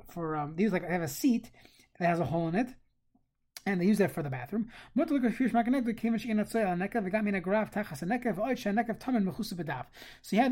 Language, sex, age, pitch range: English, male, 30-49, 175-235 Hz